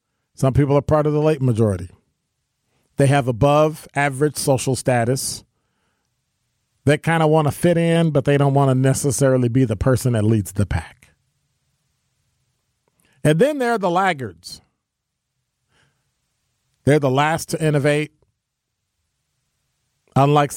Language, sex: English, male